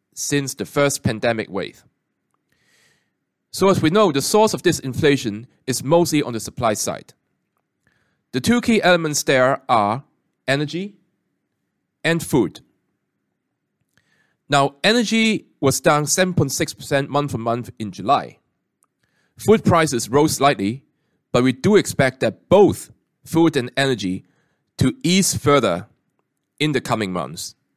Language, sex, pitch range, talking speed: English, male, 120-175 Hz, 130 wpm